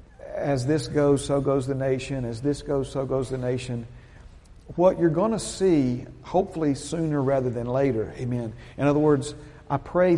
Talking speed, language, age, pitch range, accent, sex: 175 wpm, English, 50-69, 115-140 Hz, American, male